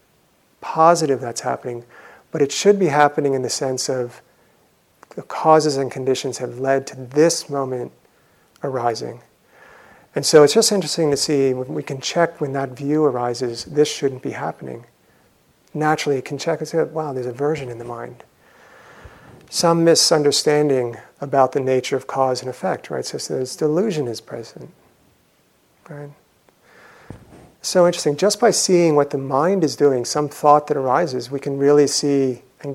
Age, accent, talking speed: 50-69, American, 165 wpm